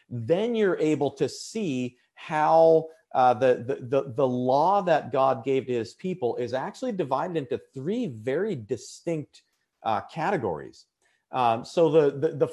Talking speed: 150 wpm